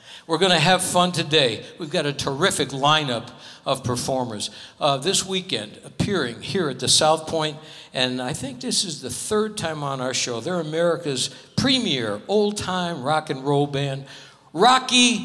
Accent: American